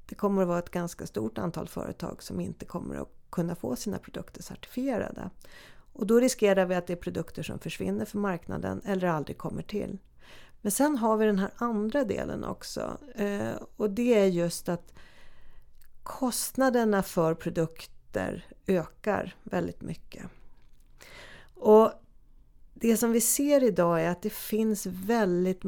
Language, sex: Swedish, female